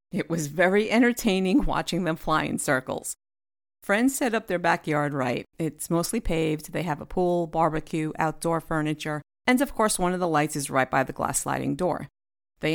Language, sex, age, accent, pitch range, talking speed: English, female, 50-69, American, 155-205 Hz, 190 wpm